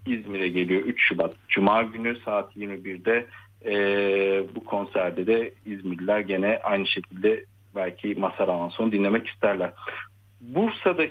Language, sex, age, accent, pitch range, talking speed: Turkish, male, 50-69, native, 100-120 Hz, 115 wpm